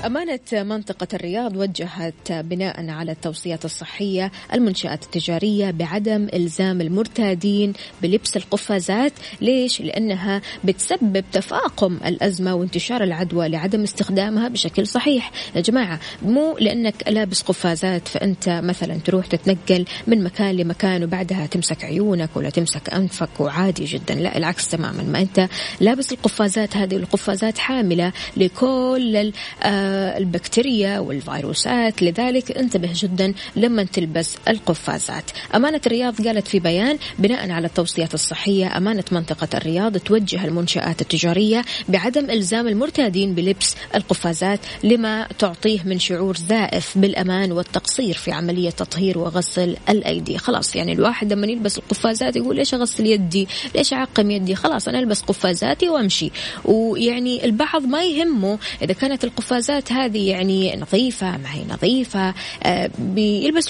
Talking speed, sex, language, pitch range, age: 125 wpm, female, Arabic, 175-225 Hz, 20-39